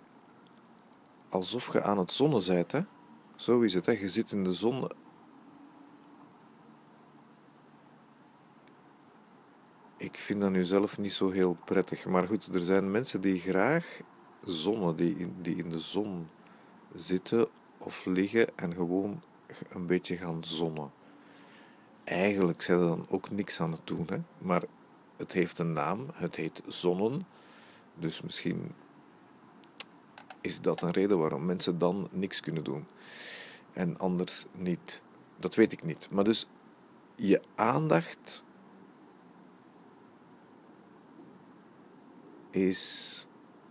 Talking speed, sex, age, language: 125 wpm, male, 50-69, Dutch